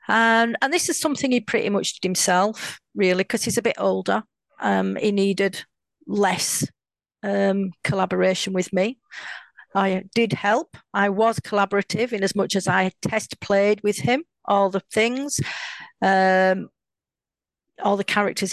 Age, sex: 40-59, female